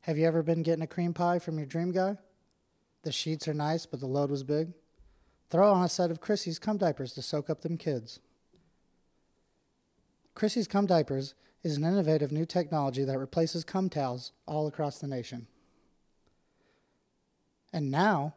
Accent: American